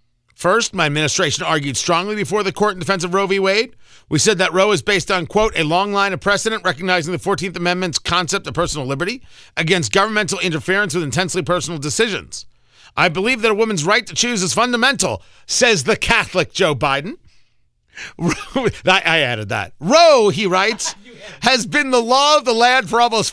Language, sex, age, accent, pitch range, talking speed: English, male, 40-59, American, 160-230 Hz, 185 wpm